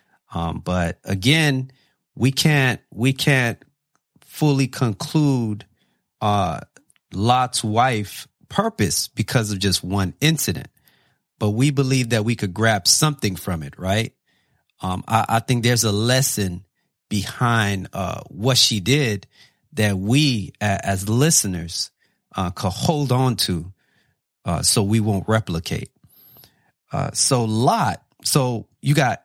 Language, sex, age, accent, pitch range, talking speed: English, male, 40-59, American, 95-130 Hz, 125 wpm